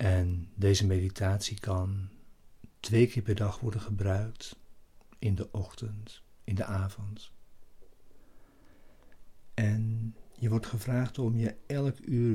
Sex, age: male, 60-79